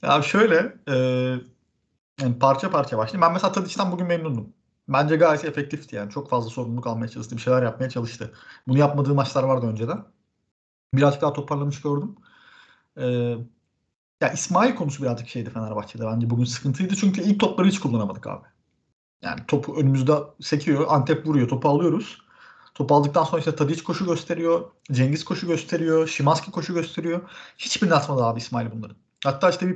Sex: male